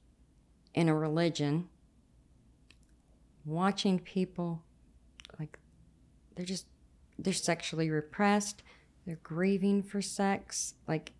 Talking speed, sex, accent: 85 wpm, female, American